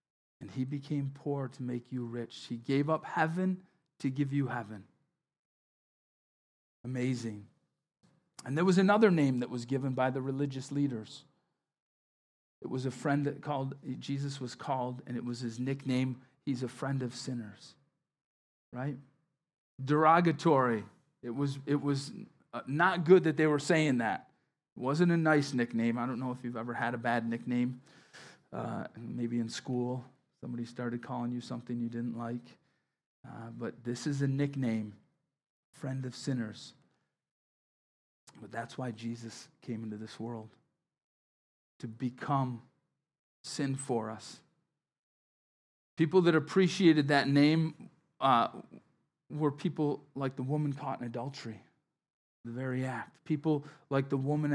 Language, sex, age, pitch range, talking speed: English, male, 40-59, 120-145 Hz, 145 wpm